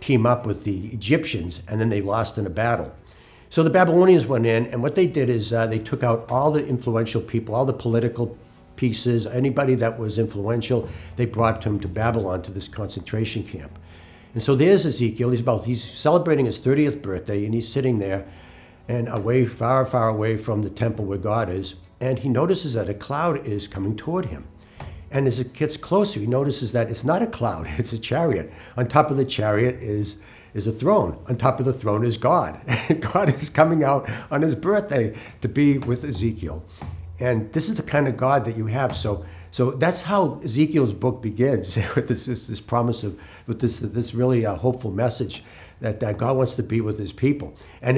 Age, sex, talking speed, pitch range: 60-79, male, 205 wpm, 105-130 Hz